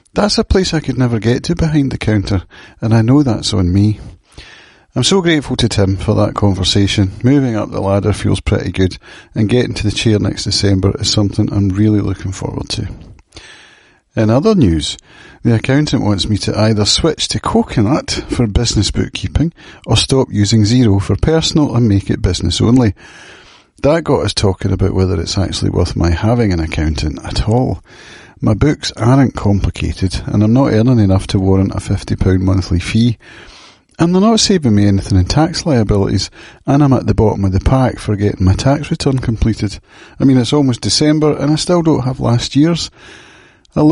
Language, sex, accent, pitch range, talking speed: English, male, British, 100-130 Hz, 190 wpm